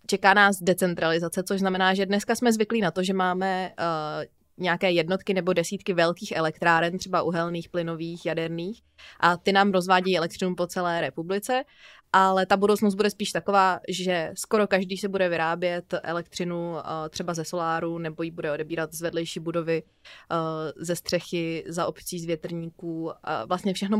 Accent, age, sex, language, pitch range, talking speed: native, 20-39, female, Czech, 170-200 Hz, 165 wpm